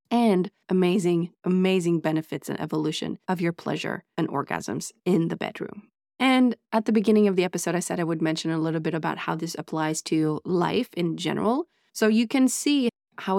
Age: 30-49